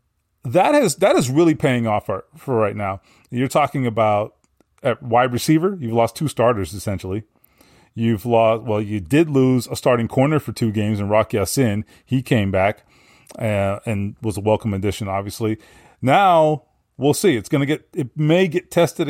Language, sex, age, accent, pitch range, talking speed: English, male, 30-49, American, 110-150 Hz, 180 wpm